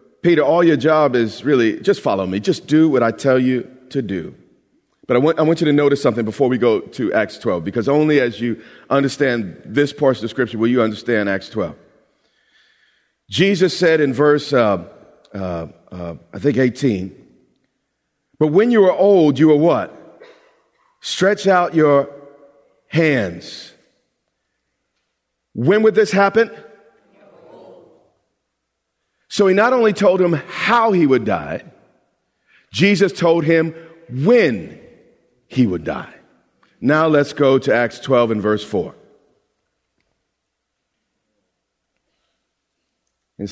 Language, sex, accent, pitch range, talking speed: English, male, American, 115-165 Hz, 135 wpm